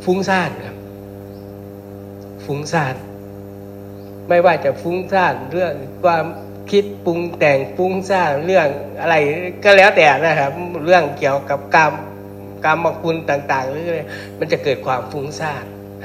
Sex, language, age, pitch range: male, Thai, 60-79, 100-145 Hz